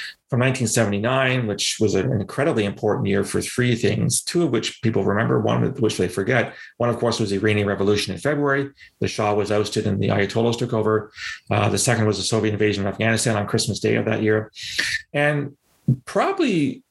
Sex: male